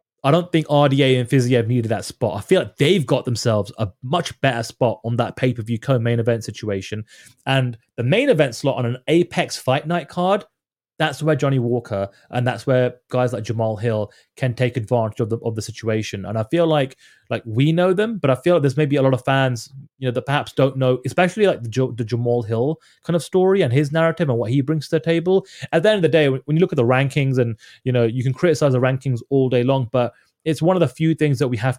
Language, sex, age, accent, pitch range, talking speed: English, male, 30-49, British, 115-145 Hz, 250 wpm